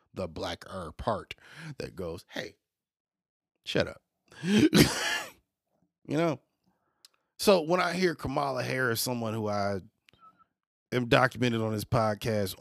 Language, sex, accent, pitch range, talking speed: English, male, American, 100-145 Hz, 115 wpm